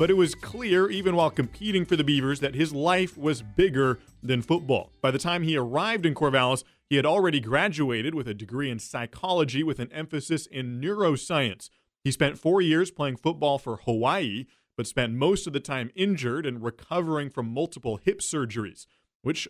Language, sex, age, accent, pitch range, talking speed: English, male, 30-49, American, 125-155 Hz, 185 wpm